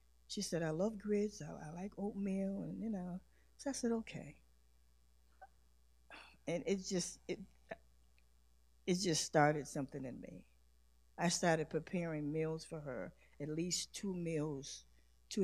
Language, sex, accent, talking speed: English, female, American, 135 wpm